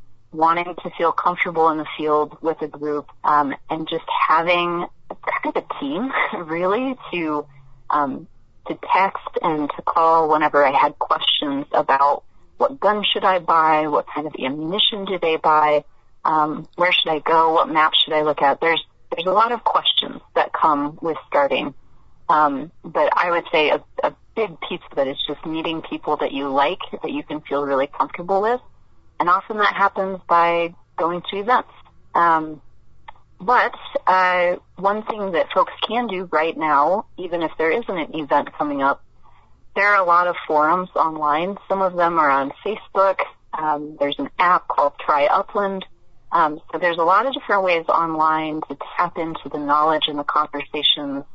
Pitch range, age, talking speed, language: 150-185 Hz, 30-49, 180 wpm, English